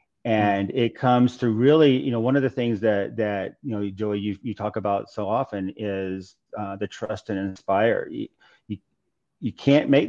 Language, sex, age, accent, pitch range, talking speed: English, male, 40-59, American, 100-120 Hz, 195 wpm